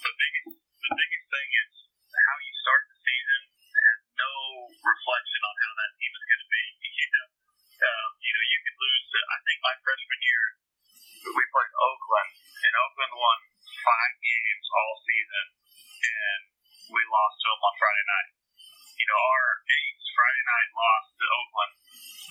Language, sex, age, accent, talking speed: English, male, 40-59, American, 170 wpm